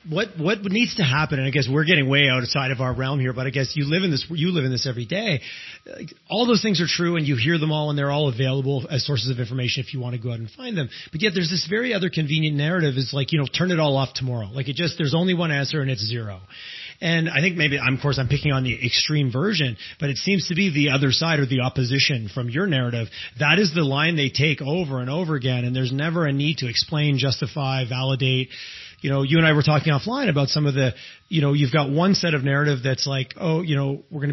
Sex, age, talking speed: male, 30-49, 275 wpm